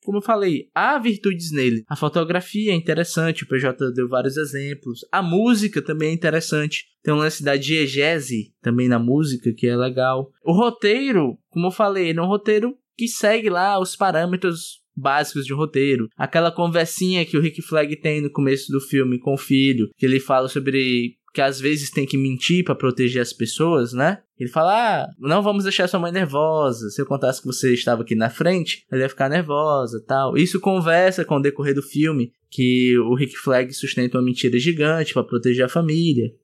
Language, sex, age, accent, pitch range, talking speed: Portuguese, male, 10-29, Brazilian, 135-195 Hz, 200 wpm